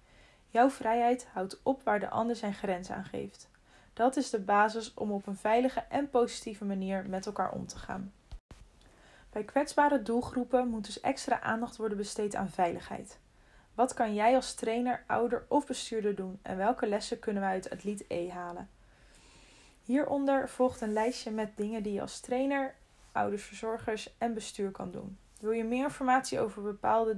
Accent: Dutch